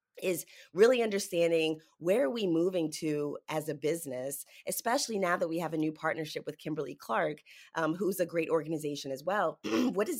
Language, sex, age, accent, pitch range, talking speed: English, female, 30-49, American, 150-190 Hz, 180 wpm